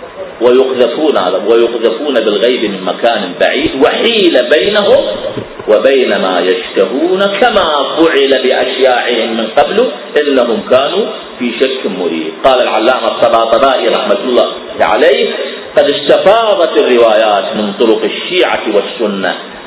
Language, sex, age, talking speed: Arabic, male, 40-59, 105 wpm